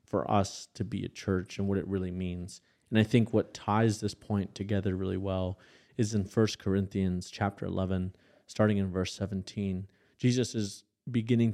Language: English